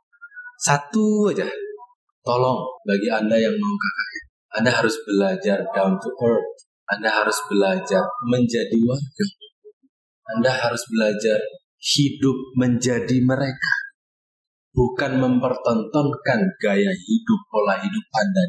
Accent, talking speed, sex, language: native, 100 wpm, male, Indonesian